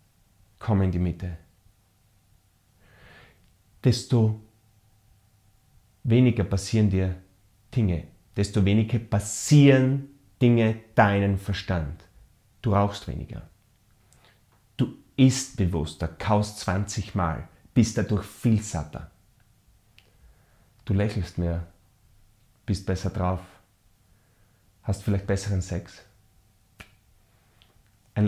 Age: 30-49